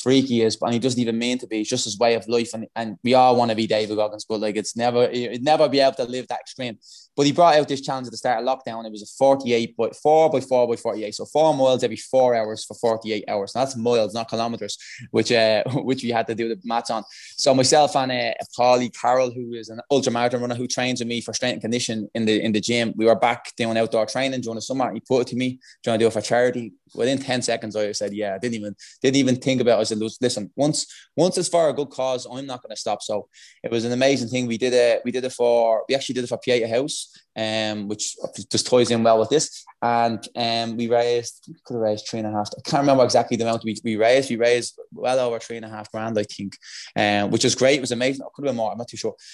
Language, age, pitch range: English, 20-39, 110-130 Hz